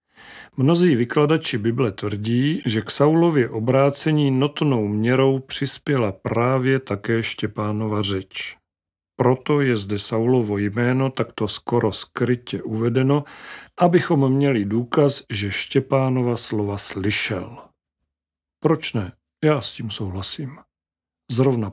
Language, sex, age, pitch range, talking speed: Czech, male, 40-59, 110-140 Hz, 105 wpm